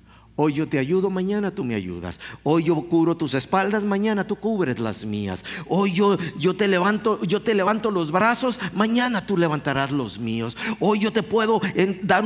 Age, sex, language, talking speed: 50-69, male, English, 170 wpm